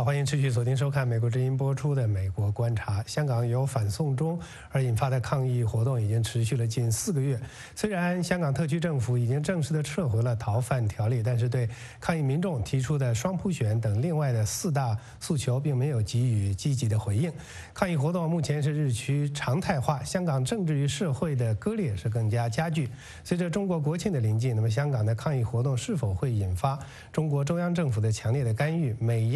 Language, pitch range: English, 115-145 Hz